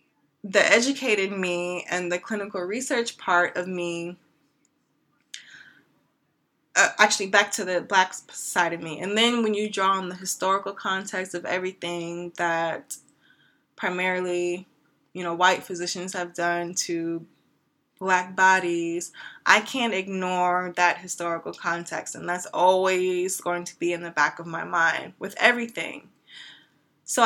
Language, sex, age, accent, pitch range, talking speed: English, female, 20-39, American, 175-195 Hz, 135 wpm